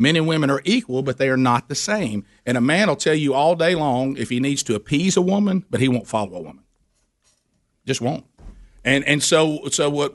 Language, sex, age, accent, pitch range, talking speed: English, male, 50-69, American, 120-150 Hz, 235 wpm